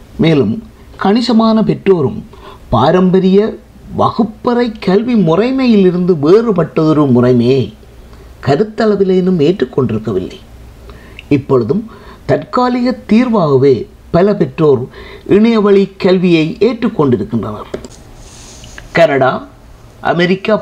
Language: Tamil